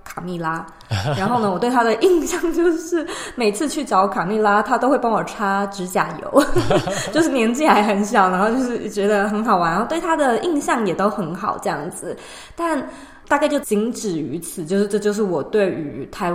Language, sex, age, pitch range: Chinese, female, 20-39, 190-230 Hz